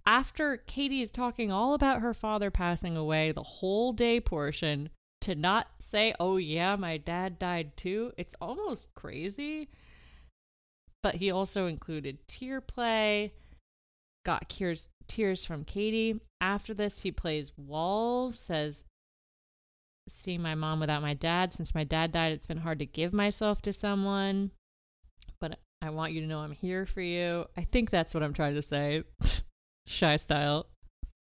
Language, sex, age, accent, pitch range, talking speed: English, female, 30-49, American, 145-190 Hz, 155 wpm